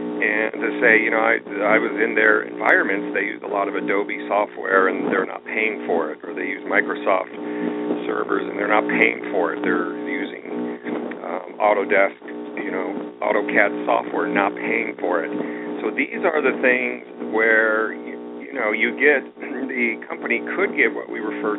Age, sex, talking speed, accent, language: 40-59, male, 180 wpm, American, English